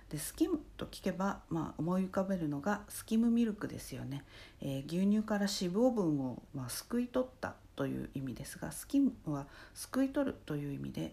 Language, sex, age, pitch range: Japanese, female, 50-69, 145-225 Hz